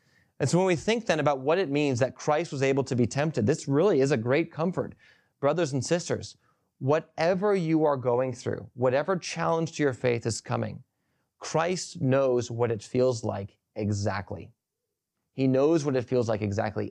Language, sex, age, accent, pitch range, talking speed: English, male, 30-49, American, 120-150 Hz, 185 wpm